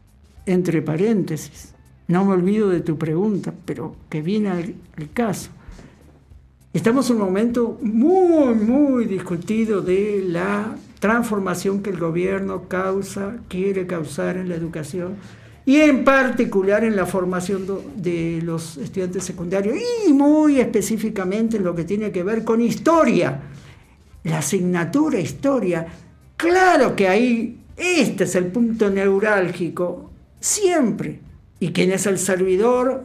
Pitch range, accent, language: 175-250 Hz, Argentinian, Spanish